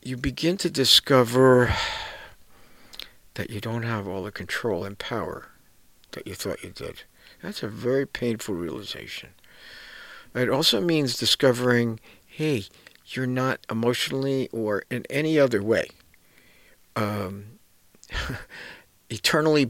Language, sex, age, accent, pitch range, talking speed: English, male, 60-79, American, 105-130 Hz, 115 wpm